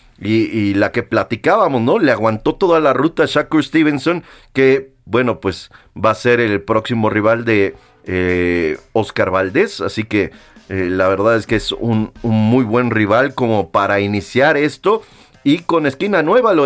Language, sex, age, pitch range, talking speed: Spanish, male, 40-59, 110-140 Hz, 175 wpm